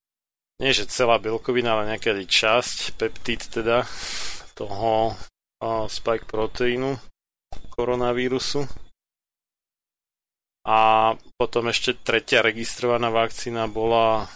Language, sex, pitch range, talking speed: Slovak, male, 110-120 Hz, 90 wpm